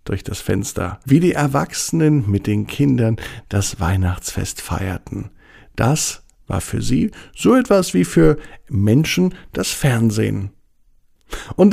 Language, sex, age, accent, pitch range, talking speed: German, male, 50-69, German, 105-135 Hz, 125 wpm